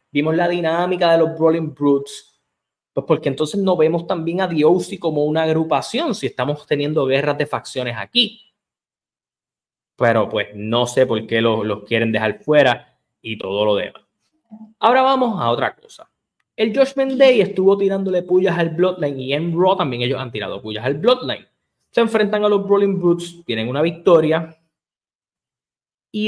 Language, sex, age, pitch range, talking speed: Spanish, male, 20-39, 125-185 Hz, 165 wpm